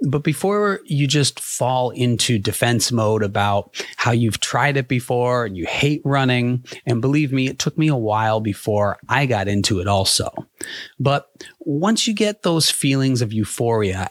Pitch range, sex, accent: 110-145 Hz, male, American